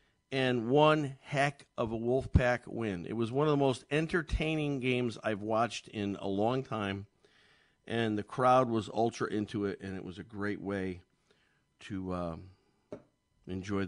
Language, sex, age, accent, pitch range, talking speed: English, male, 50-69, American, 105-130 Hz, 160 wpm